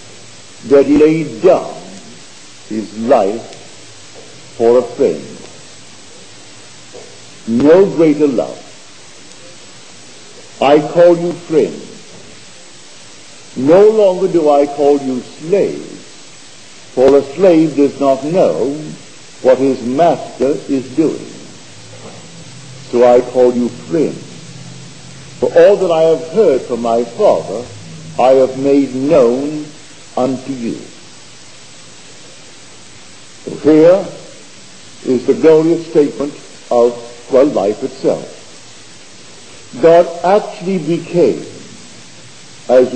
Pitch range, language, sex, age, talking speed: 125-165 Hz, English, male, 50-69, 95 wpm